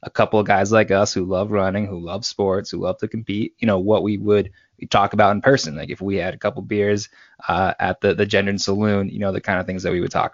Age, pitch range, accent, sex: 20-39, 95-110 Hz, American, male